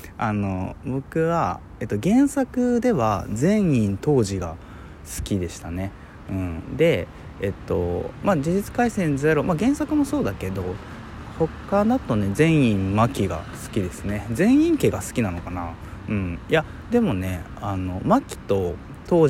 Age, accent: 20-39, native